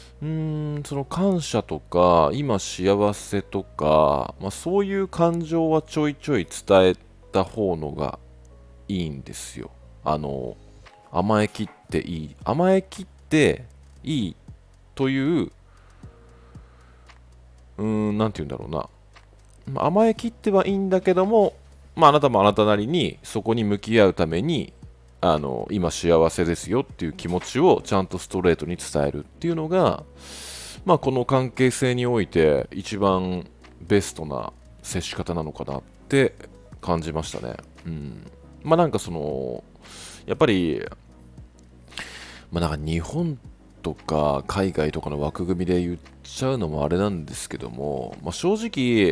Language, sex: Japanese, male